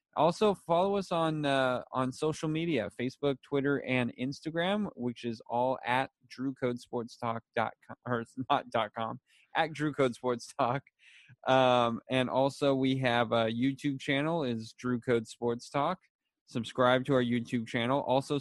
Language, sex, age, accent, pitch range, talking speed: English, male, 20-39, American, 115-135 Hz, 160 wpm